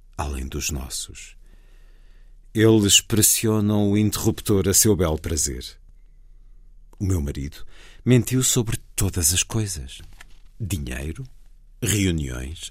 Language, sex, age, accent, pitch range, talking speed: Portuguese, male, 50-69, Portuguese, 75-110 Hz, 100 wpm